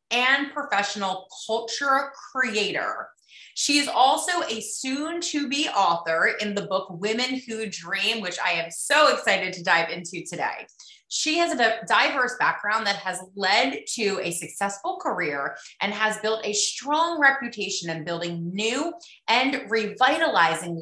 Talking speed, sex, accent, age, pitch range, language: 145 wpm, female, American, 30-49, 185-250 Hz, English